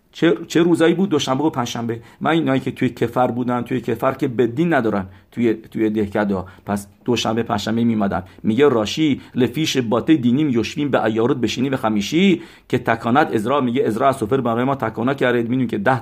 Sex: male